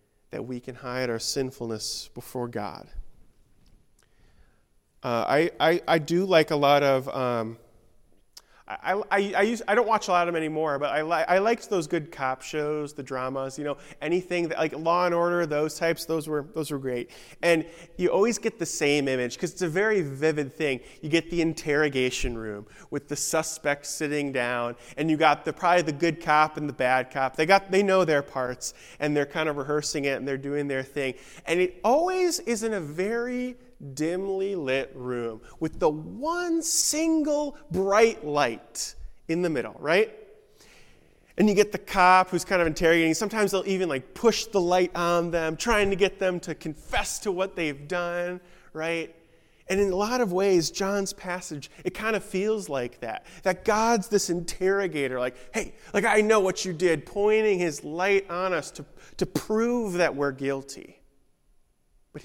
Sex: male